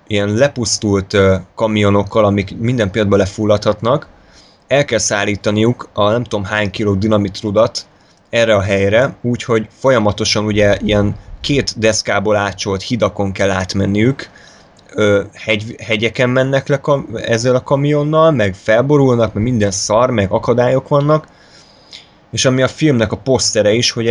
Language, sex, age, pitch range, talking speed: Hungarian, male, 20-39, 100-120 Hz, 135 wpm